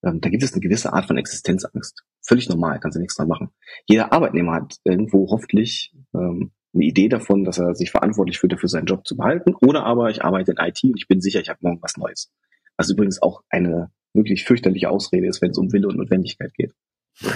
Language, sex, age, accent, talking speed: German, male, 30-49, German, 220 wpm